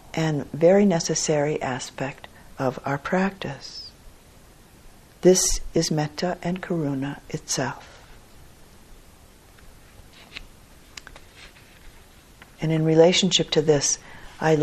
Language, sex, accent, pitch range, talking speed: English, female, American, 140-165 Hz, 80 wpm